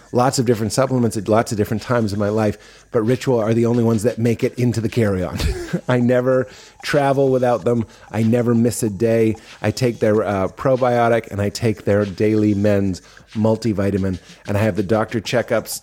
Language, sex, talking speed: English, male, 200 wpm